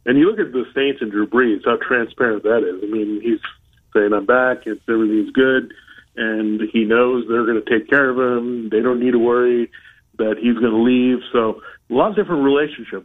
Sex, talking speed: male, 220 wpm